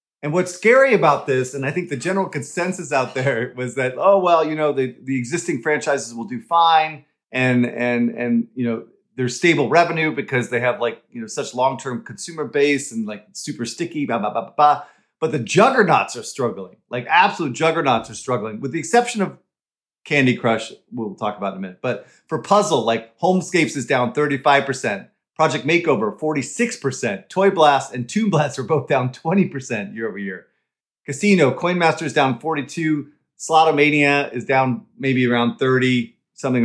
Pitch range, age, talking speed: 125-165 Hz, 40-59, 190 wpm